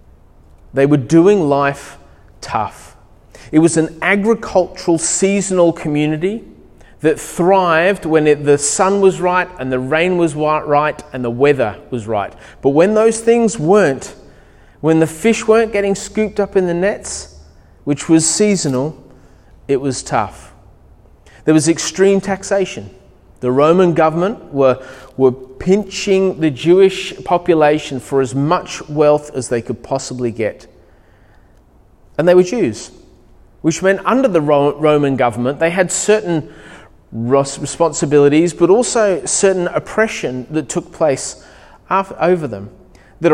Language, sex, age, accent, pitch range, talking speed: English, male, 30-49, Australian, 130-185 Hz, 135 wpm